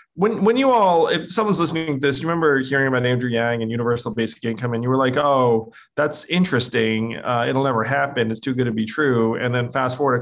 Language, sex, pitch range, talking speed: English, male, 115-140 Hz, 240 wpm